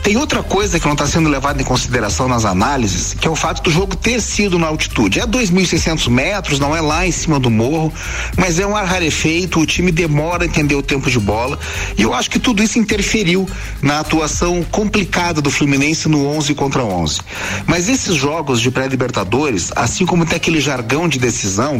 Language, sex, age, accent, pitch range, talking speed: Portuguese, male, 40-59, Brazilian, 120-170 Hz, 205 wpm